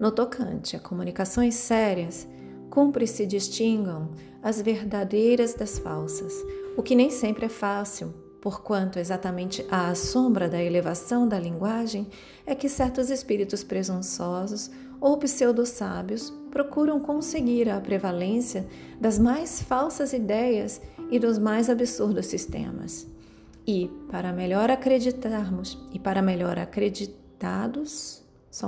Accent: Brazilian